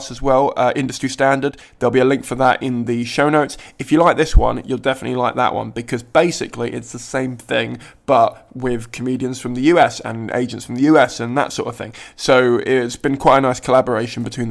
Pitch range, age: 120-135 Hz, 20-39